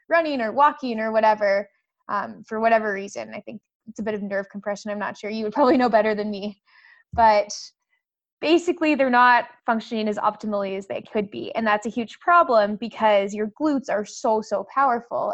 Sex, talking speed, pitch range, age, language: female, 195 wpm, 215-275 Hz, 20-39, English